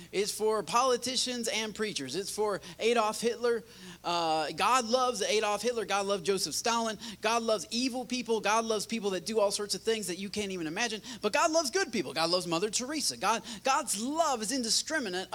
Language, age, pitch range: English, 30-49, 160-235 Hz